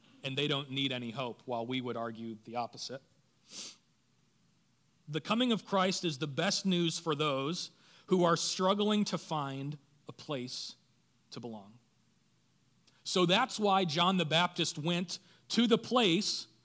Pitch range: 130-185 Hz